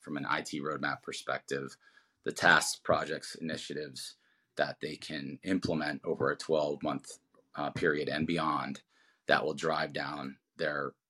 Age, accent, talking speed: 30-49, American, 135 wpm